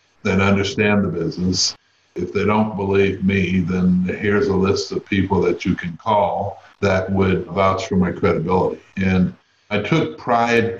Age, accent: 60-79, American